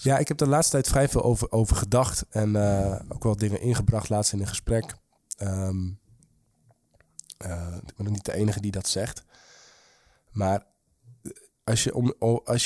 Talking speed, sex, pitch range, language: 180 wpm, male, 100-120 Hz, Dutch